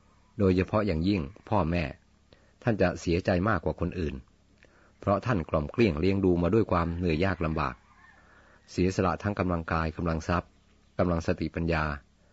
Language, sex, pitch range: Thai, male, 80-100 Hz